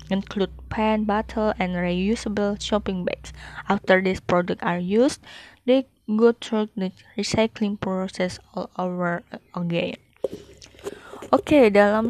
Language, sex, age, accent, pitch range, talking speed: Indonesian, female, 20-39, native, 185-215 Hz, 120 wpm